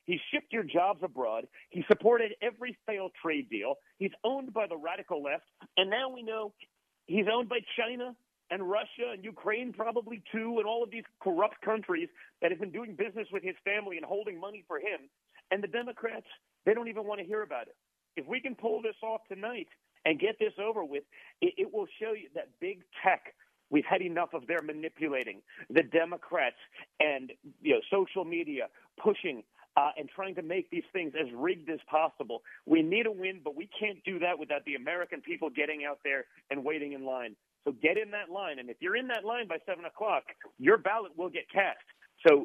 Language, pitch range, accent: English, 170-235 Hz, American